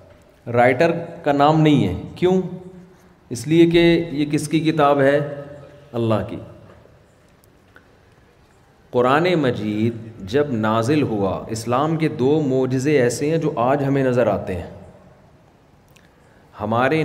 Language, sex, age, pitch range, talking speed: Urdu, male, 40-59, 115-155 Hz, 120 wpm